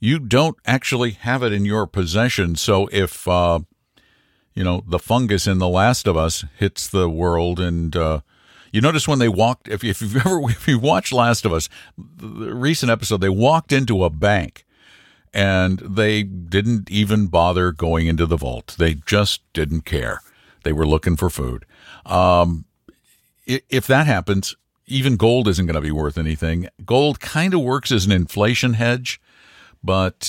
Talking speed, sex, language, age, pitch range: 170 wpm, male, English, 50-69, 90-120 Hz